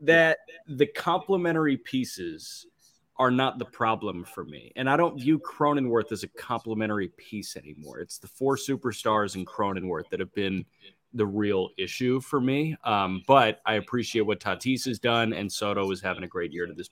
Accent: American